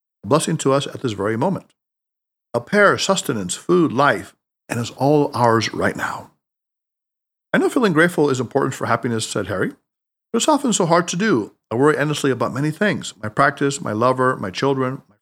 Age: 50-69